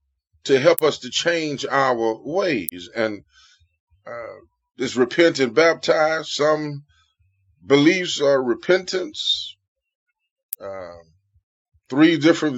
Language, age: English, 30-49